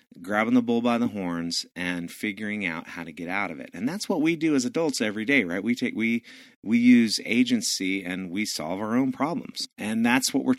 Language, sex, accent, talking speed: English, male, American, 230 wpm